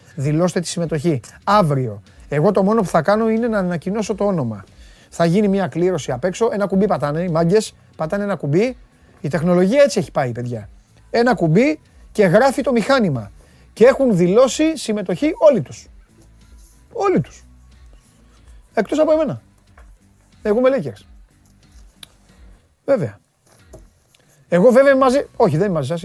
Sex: male